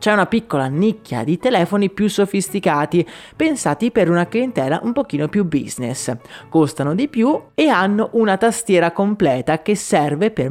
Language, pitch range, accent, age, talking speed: Italian, 145-205 Hz, native, 30-49, 155 wpm